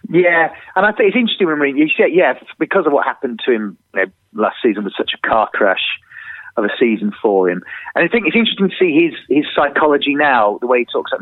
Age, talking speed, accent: 40-59, 245 wpm, British